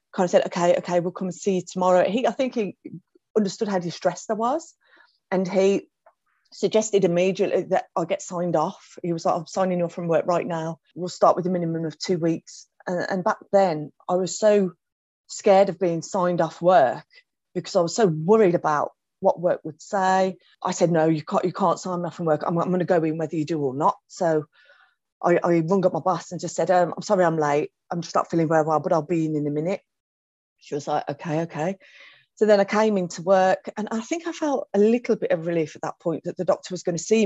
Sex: female